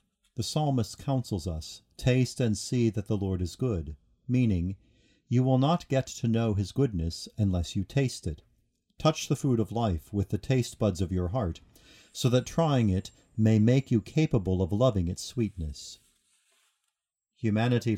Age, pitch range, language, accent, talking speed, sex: 50-69, 95-125 Hz, English, American, 165 wpm, male